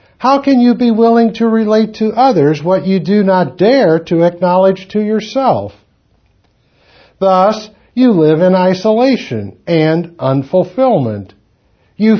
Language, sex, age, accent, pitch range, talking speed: English, male, 60-79, American, 135-220 Hz, 130 wpm